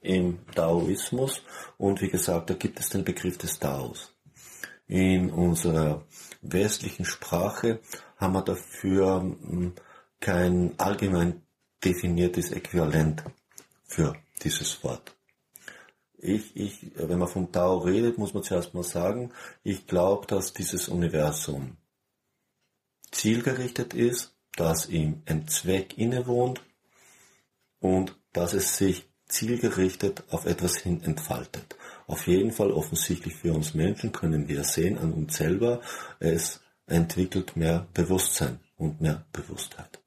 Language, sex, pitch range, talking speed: German, male, 80-95 Hz, 120 wpm